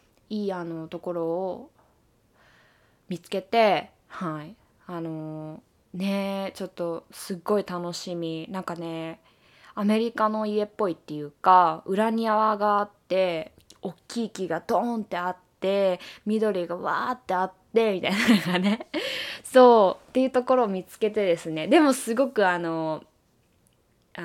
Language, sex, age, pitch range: Japanese, female, 20-39, 165-215 Hz